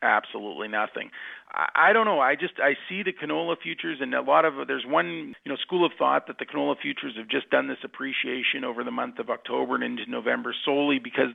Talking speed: 235 wpm